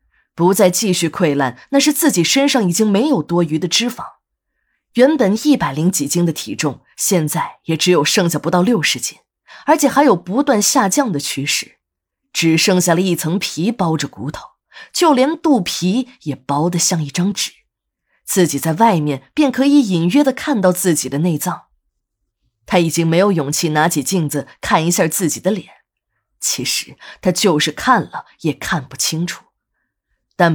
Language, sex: Chinese, female